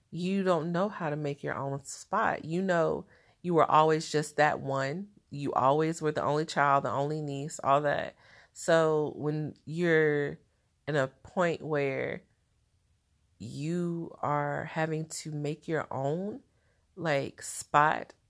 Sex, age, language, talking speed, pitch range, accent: female, 30-49, English, 145 wpm, 140-175 Hz, American